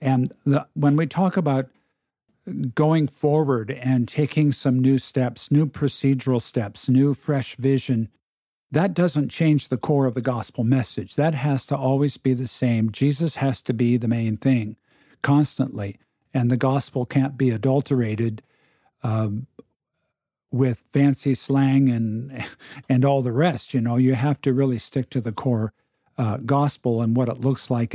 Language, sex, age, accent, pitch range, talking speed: English, male, 50-69, American, 120-140 Hz, 160 wpm